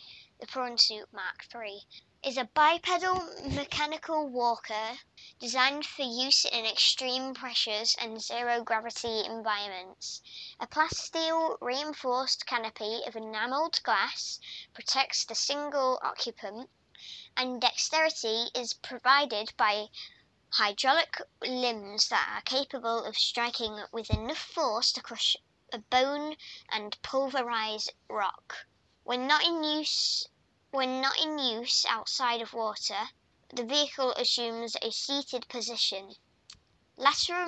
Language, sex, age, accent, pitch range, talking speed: English, male, 10-29, British, 225-275 Hz, 110 wpm